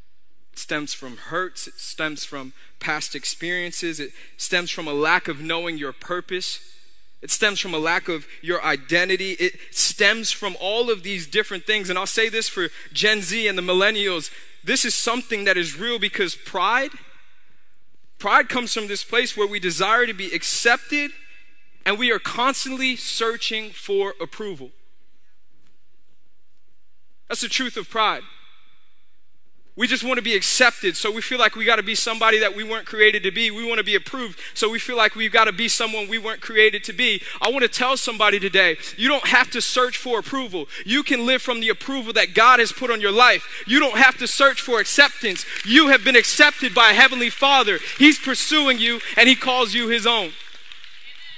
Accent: American